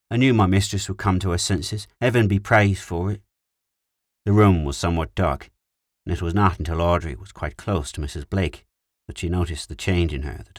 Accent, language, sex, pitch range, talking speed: British, English, male, 80-100 Hz, 220 wpm